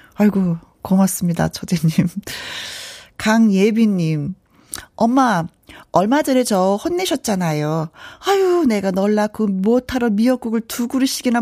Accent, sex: native, female